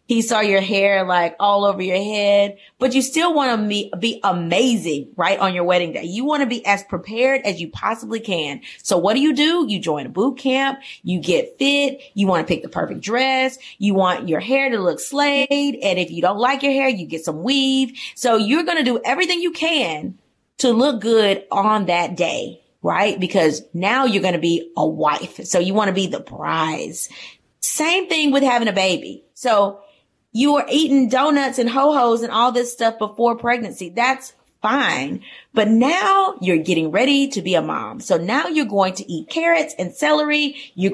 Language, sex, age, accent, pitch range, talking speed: English, female, 30-49, American, 190-275 Hz, 205 wpm